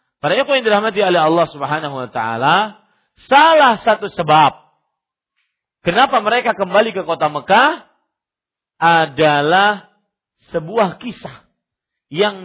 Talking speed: 95 wpm